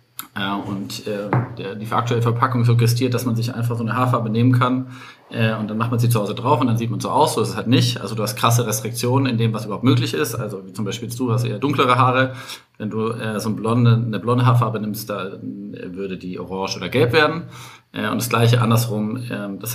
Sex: male